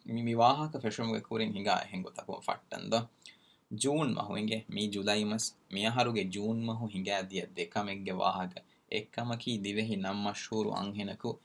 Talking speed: 110 wpm